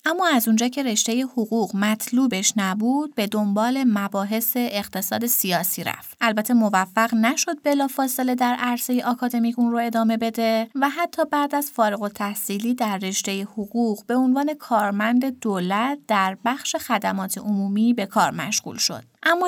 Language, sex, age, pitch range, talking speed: Persian, female, 30-49, 205-260 Hz, 150 wpm